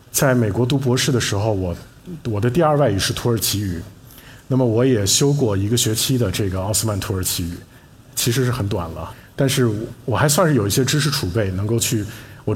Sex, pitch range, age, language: male, 95-130 Hz, 50-69, Chinese